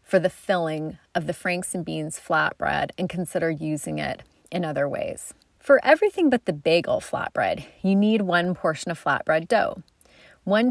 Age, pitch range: 30-49, 155-210 Hz